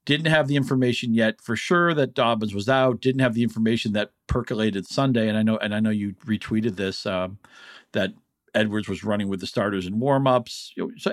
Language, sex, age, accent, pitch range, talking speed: English, male, 50-69, American, 100-130 Hz, 205 wpm